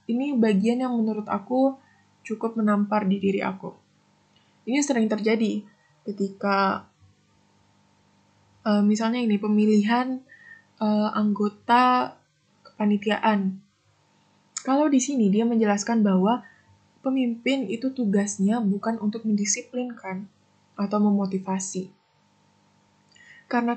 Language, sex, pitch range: Indonesian, female, 205-245 Hz